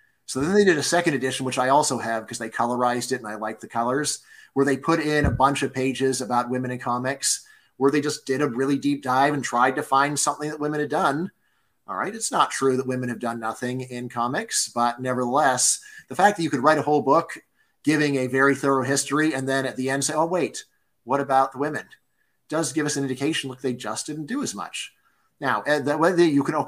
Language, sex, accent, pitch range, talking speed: English, male, American, 125-150 Hz, 235 wpm